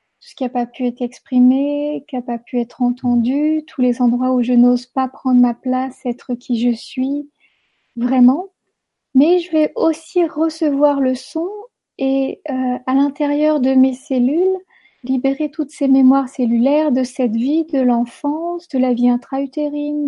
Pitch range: 250-295 Hz